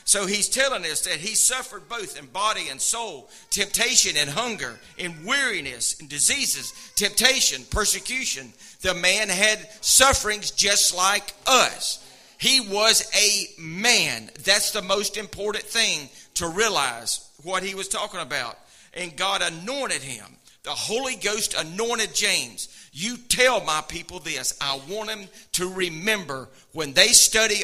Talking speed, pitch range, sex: 145 wpm, 175-215 Hz, male